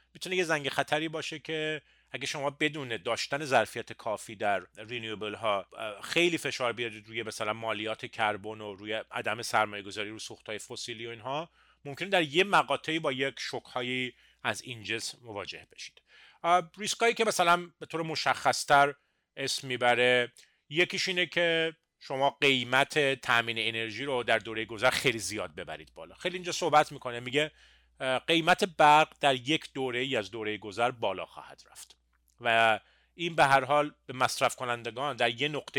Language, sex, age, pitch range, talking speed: Persian, male, 30-49, 115-150 Hz, 155 wpm